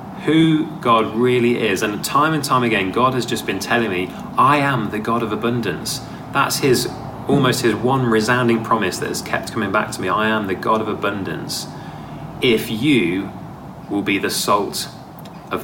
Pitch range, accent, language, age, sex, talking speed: 105-130 Hz, British, English, 30-49, male, 185 wpm